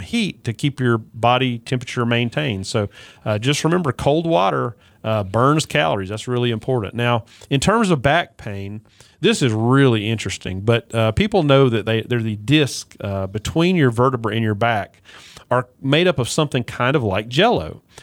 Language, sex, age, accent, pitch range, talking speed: English, male, 40-59, American, 115-140 Hz, 180 wpm